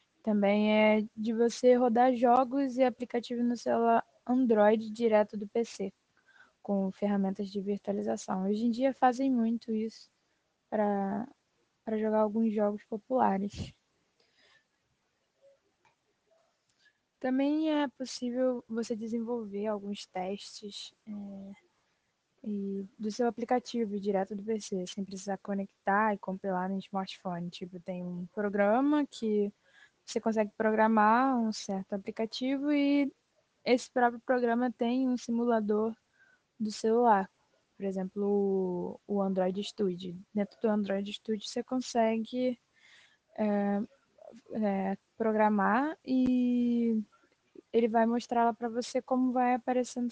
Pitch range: 200-245 Hz